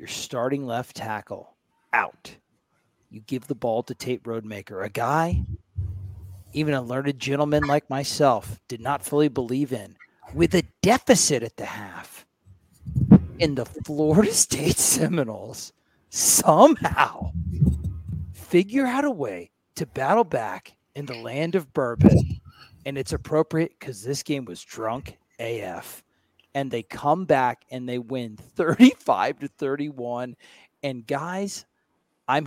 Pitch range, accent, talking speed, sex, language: 115-155 Hz, American, 130 wpm, male, English